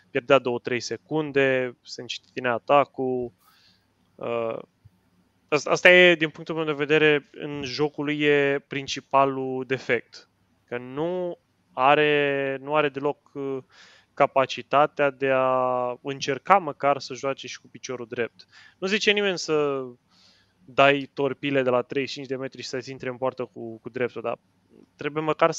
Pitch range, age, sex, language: 120-155 Hz, 20-39, male, Romanian